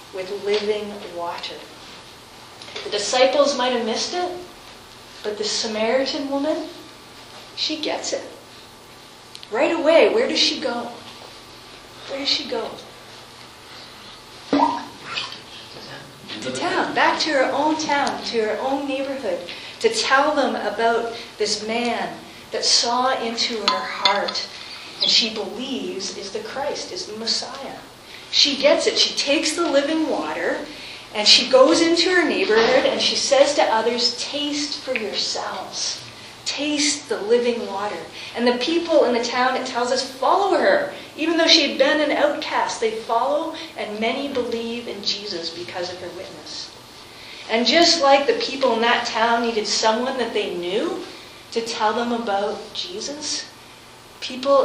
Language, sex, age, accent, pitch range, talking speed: English, female, 40-59, American, 225-295 Hz, 145 wpm